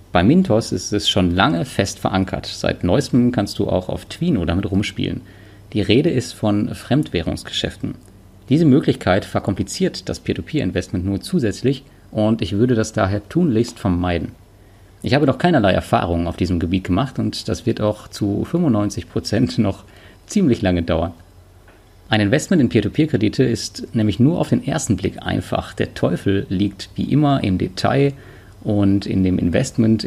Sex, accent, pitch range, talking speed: male, German, 95-120 Hz, 155 wpm